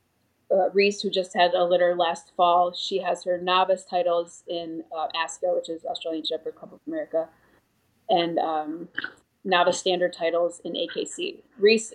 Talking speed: 160 wpm